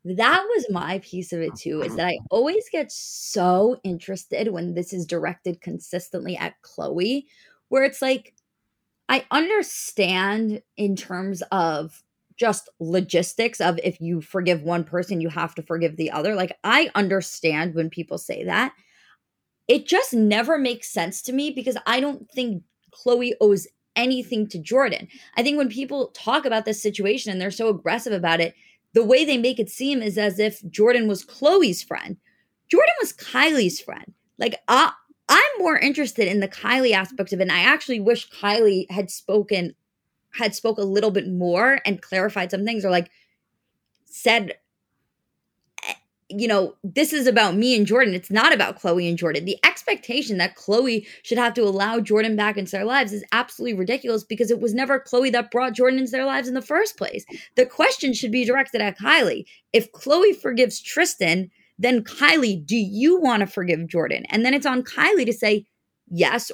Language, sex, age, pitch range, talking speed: English, female, 20-39, 190-255 Hz, 180 wpm